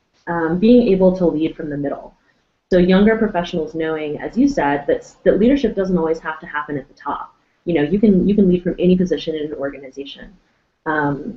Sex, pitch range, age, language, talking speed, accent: female, 150-185 Hz, 20-39, English, 205 wpm, American